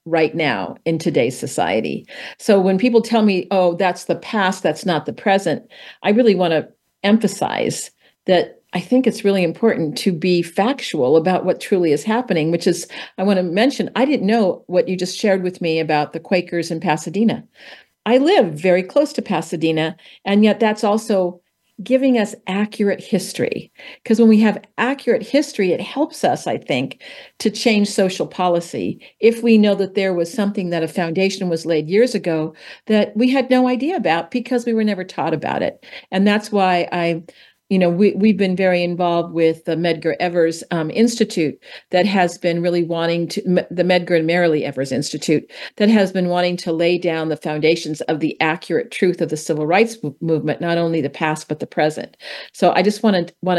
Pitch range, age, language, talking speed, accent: 165-210 Hz, 50-69, English, 195 wpm, American